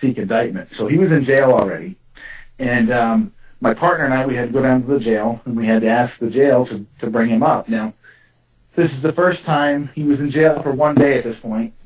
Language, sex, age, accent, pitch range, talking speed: English, male, 40-59, American, 115-140 Hz, 255 wpm